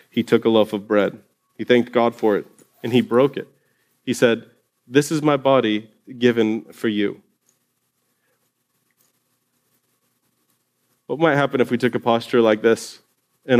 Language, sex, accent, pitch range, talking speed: English, male, American, 110-125 Hz, 155 wpm